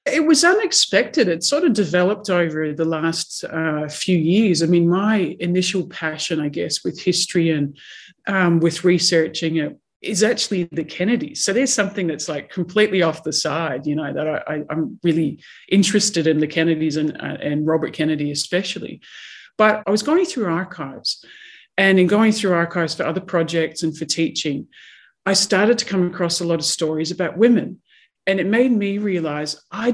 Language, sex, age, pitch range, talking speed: English, male, 40-59, 160-205 Hz, 180 wpm